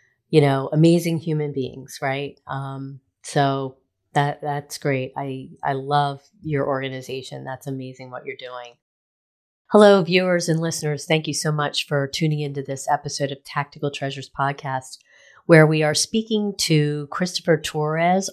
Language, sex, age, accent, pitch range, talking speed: English, female, 40-59, American, 140-165 Hz, 145 wpm